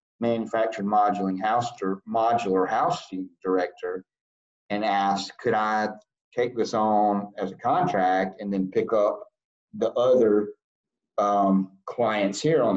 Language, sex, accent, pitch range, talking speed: English, male, American, 95-110 Hz, 115 wpm